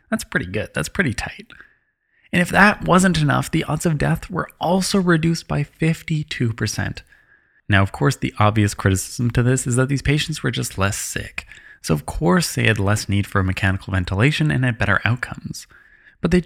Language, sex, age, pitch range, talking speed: English, male, 20-39, 110-160 Hz, 190 wpm